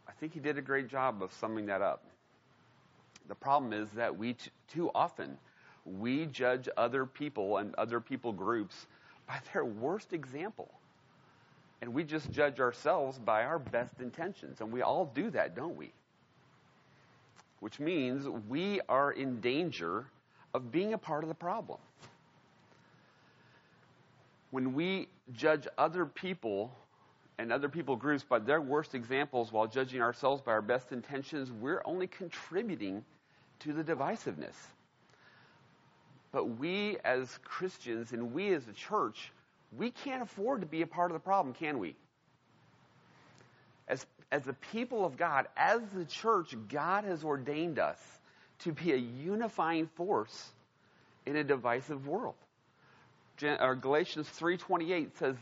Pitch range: 125-165 Hz